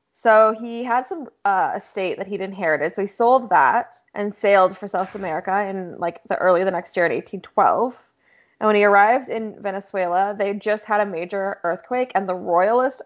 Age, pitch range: 20-39, 185-235 Hz